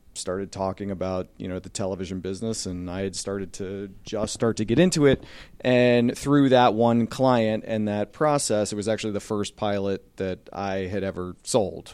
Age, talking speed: 40-59, 190 wpm